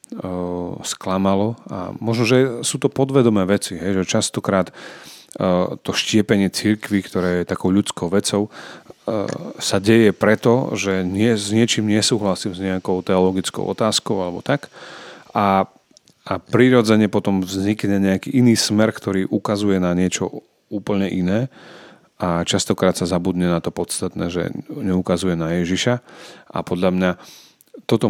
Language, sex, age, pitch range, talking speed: Czech, male, 30-49, 90-110 Hz, 130 wpm